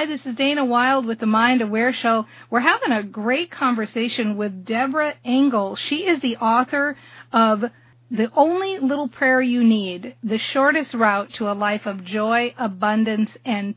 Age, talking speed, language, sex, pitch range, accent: 40-59, 165 wpm, English, female, 215-260 Hz, American